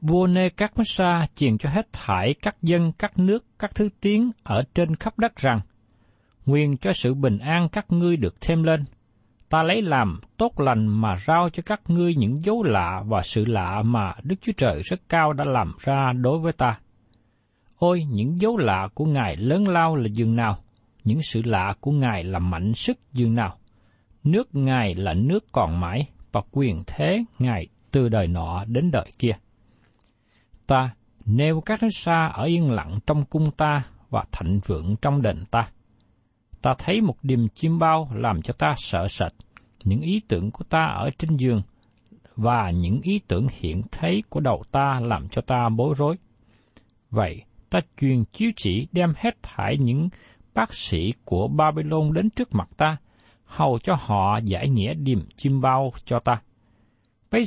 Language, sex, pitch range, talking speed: Vietnamese, male, 110-160 Hz, 175 wpm